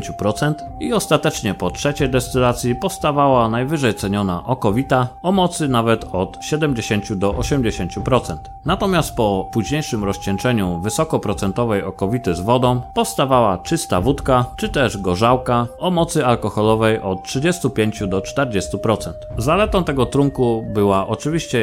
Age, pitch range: 30-49, 100-140 Hz